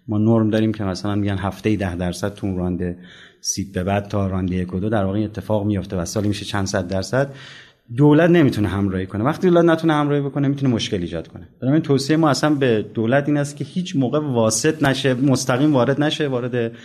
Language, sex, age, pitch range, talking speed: Persian, male, 30-49, 105-150 Hz, 205 wpm